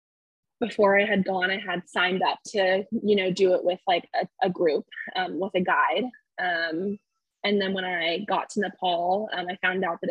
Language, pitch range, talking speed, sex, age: English, 180-225 Hz, 210 wpm, female, 20-39